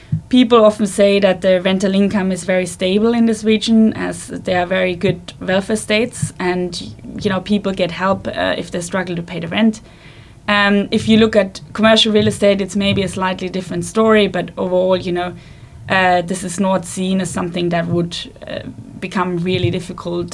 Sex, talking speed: female, 190 wpm